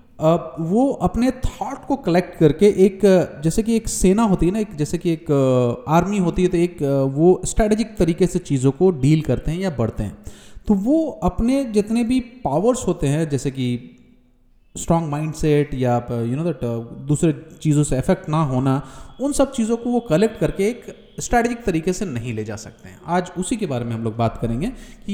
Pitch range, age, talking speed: 140-210 Hz, 30-49, 200 wpm